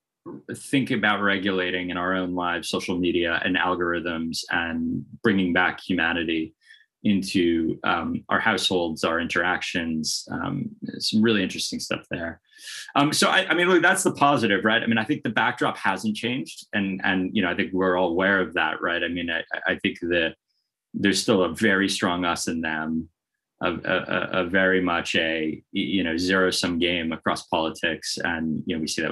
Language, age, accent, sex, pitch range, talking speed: English, 20-39, American, male, 85-105 Hz, 180 wpm